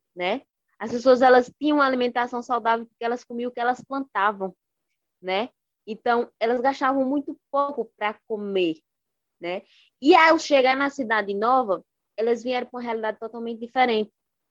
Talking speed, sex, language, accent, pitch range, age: 155 wpm, female, Portuguese, Brazilian, 200-245 Hz, 20-39